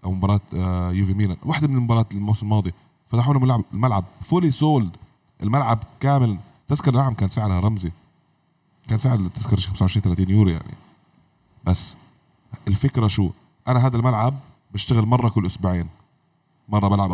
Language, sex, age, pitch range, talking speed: Arabic, male, 20-39, 95-135 Hz, 140 wpm